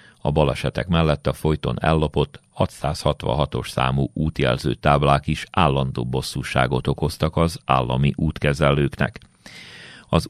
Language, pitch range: Hungarian, 70-85 Hz